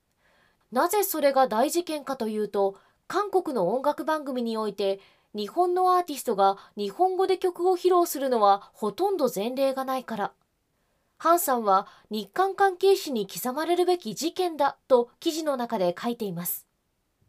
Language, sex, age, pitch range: Japanese, female, 20-39, 210-355 Hz